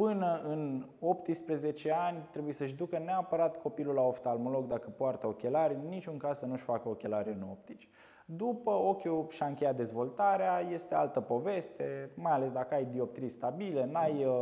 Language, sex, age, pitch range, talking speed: Romanian, male, 20-39, 120-160 Hz, 160 wpm